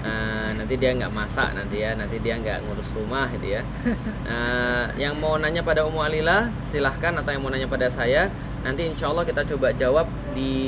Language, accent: Indonesian, native